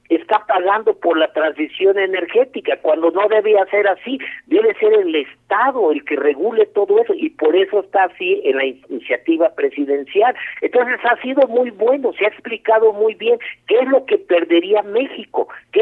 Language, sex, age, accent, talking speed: Spanish, male, 50-69, Mexican, 175 wpm